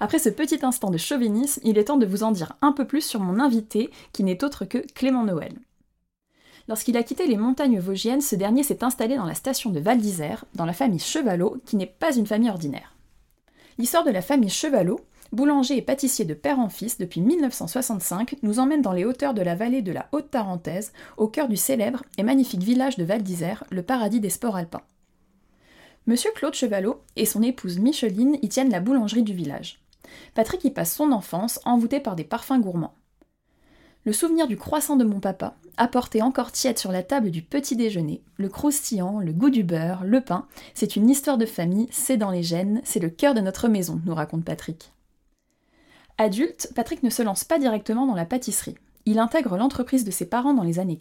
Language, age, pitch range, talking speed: French, 20-39, 200-270 Hz, 205 wpm